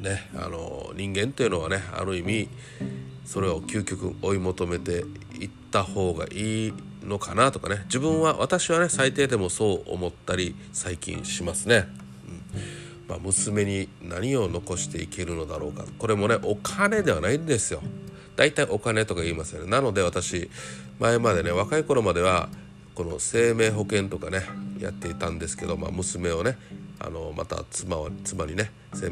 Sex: male